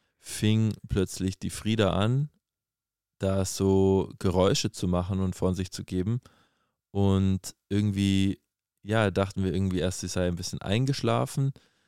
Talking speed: 135 wpm